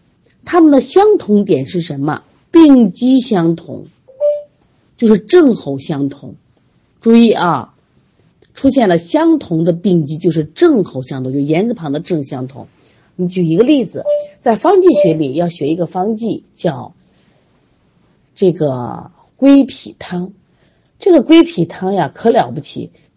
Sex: female